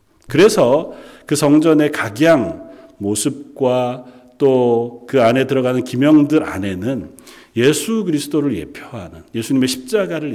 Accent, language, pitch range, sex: native, Korean, 110-155 Hz, male